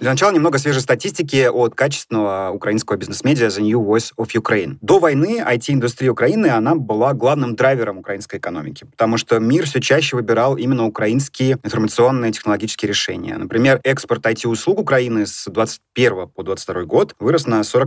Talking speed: 150 wpm